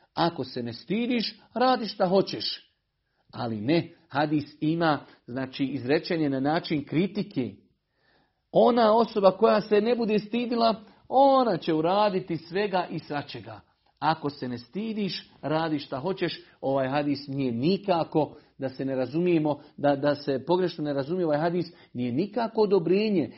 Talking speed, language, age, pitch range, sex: 140 wpm, Croatian, 50-69, 145-190 Hz, male